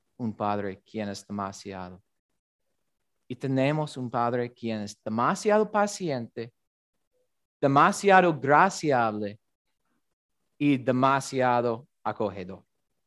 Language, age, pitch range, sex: Spanish, 30-49, 130-185 Hz, male